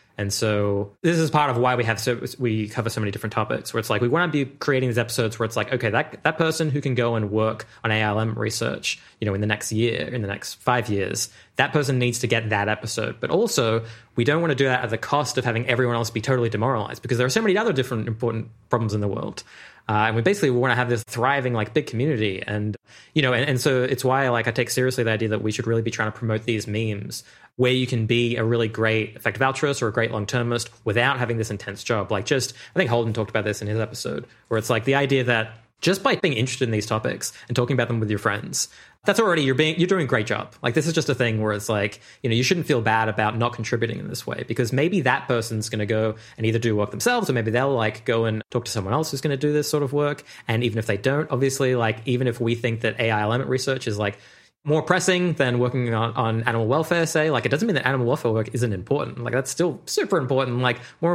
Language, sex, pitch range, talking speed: English, male, 110-135 Hz, 270 wpm